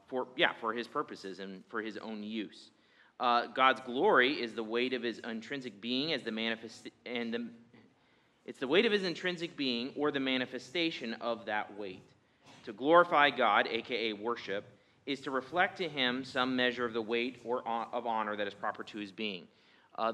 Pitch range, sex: 115-145 Hz, male